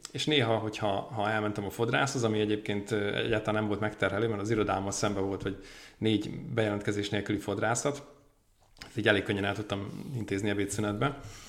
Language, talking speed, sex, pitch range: Hungarian, 155 wpm, male, 105-120 Hz